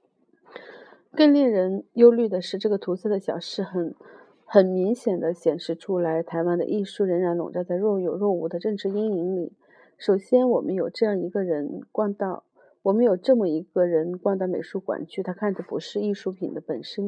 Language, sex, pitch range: Chinese, female, 180-235 Hz